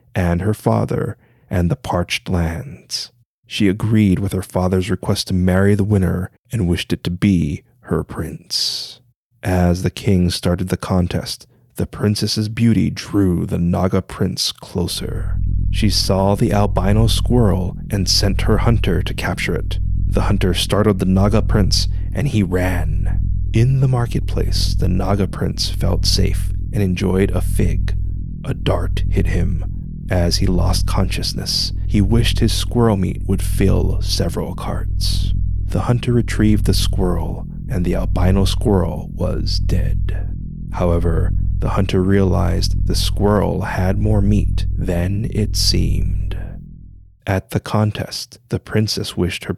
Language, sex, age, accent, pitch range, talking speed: English, male, 30-49, American, 90-105 Hz, 145 wpm